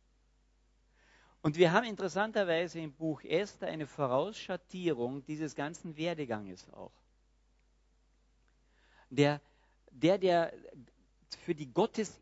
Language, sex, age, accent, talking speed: German, male, 50-69, German, 95 wpm